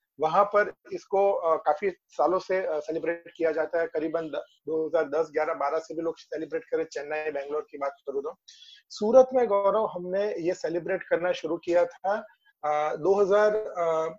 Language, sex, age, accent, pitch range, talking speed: Hindi, male, 30-49, native, 165-215 Hz, 155 wpm